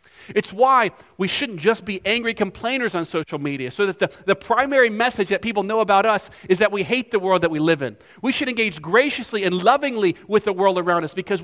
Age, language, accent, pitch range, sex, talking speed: 40-59, English, American, 170-215 Hz, male, 230 wpm